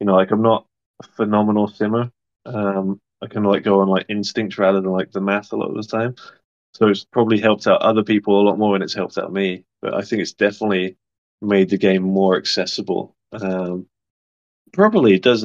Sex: male